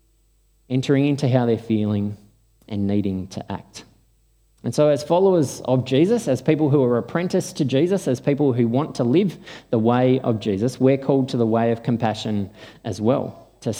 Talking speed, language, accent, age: 185 wpm, English, Australian, 20-39